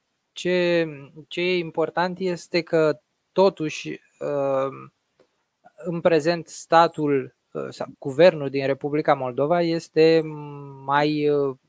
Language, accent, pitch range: Romanian, native, 130-160 Hz